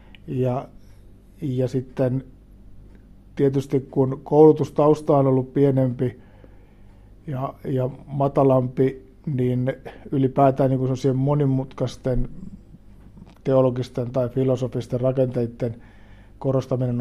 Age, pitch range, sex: 60-79, 120-140 Hz, male